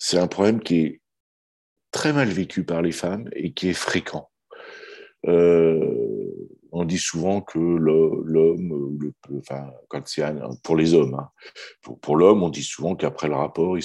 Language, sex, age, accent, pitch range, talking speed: French, male, 50-69, French, 75-95 Hz, 175 wpm